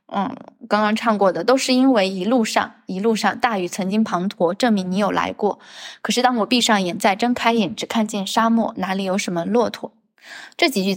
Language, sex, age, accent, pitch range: Chinese, female, 10-29, native, 195-235 Hz